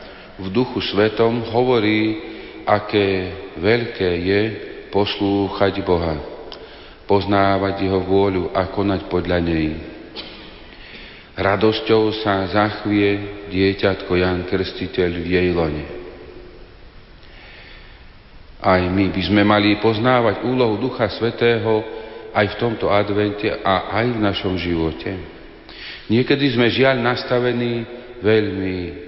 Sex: male